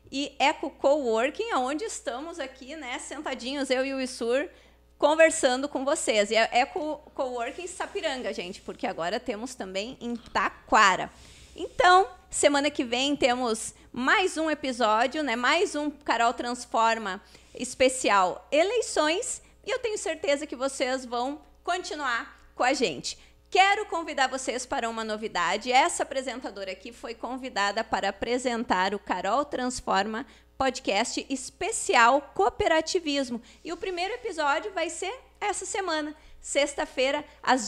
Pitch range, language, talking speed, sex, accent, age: 245-320 Hz, Portuguese, 130 wpm, female, Brazilian, 30-49